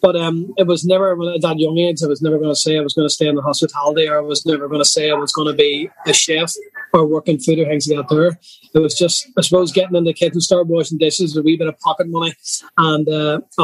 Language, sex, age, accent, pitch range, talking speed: English, male, 20-39, Irish, 155-175 Hz, 300 wpm